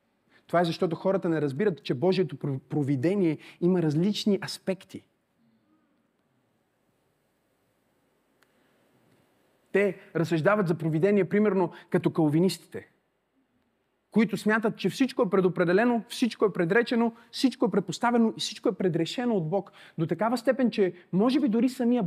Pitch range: 165-230 Hz